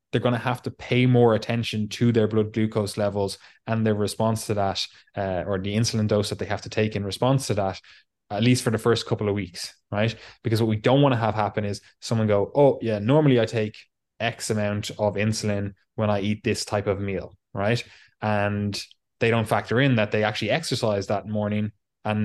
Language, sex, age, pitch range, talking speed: English, male, 20-39, 100-115 Hz, 220 wpm